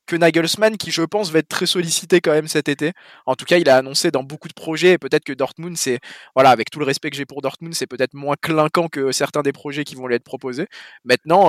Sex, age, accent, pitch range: male, 20-39, French, 135-170 Hz